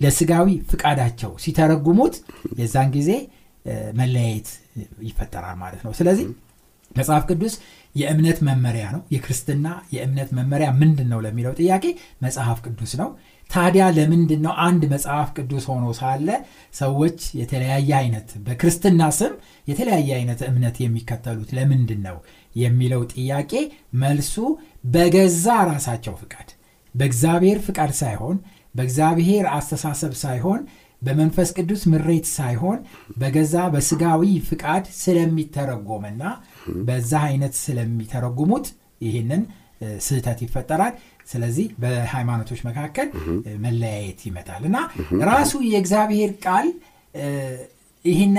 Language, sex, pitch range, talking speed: Amharic, male, 120-175 Hz, 70 wpm